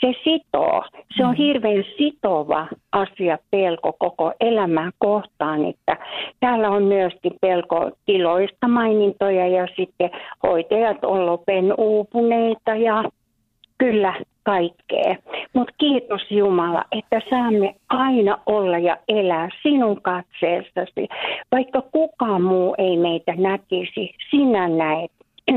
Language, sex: Finnish, female